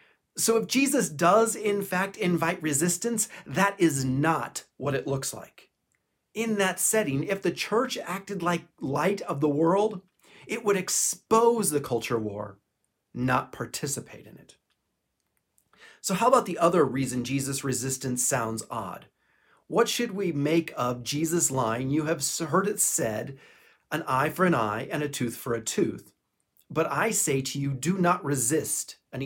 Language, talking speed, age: English, 160 wpm, 30-49